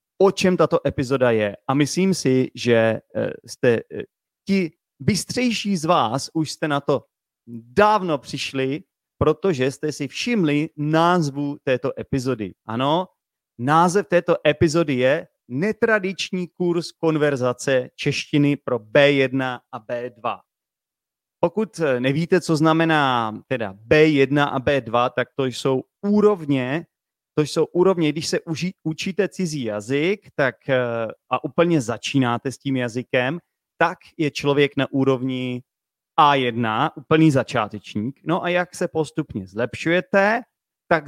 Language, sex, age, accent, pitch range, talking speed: Czech, male, 30-49, native, 130-175 Hz, 120 wpm